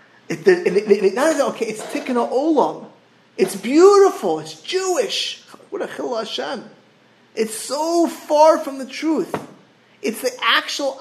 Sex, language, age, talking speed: male, English, 30-49, 105 wpm